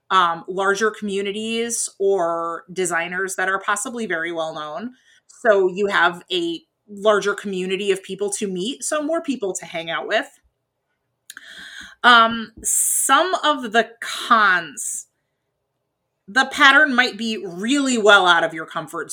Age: 30-49